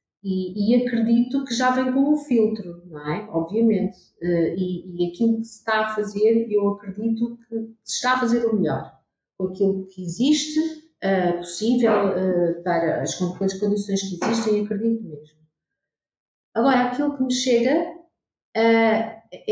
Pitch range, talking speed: 190-240 Hz, 155 wpm